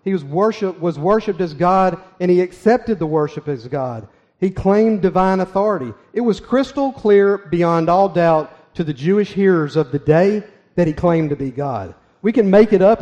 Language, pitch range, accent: English, 155-190 Hz, American